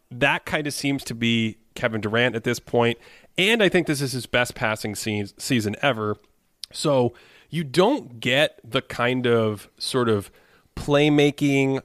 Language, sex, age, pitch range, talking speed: English, male, 30-49, 105-130 Hz, 155 wpm